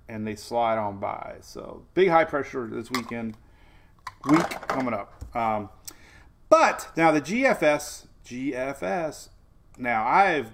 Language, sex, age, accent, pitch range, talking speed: English, male, 30-49, American, 105-145 Hz, 125 wpm